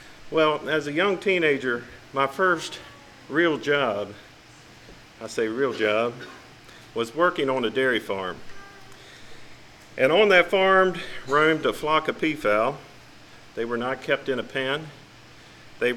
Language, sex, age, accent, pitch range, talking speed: English, male, 50-69, American, 130-165 Hz, 135 wpm